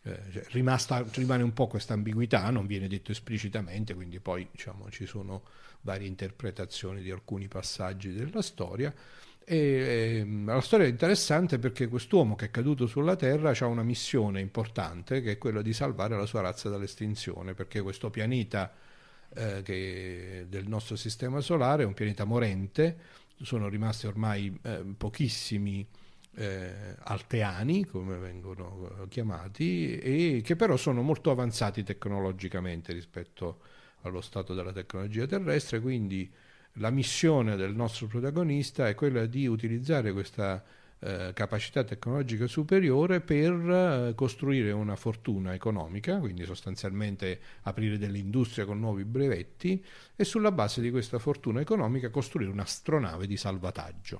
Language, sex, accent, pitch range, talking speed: Italian, male, native, 100-130 Hz, 130 wpm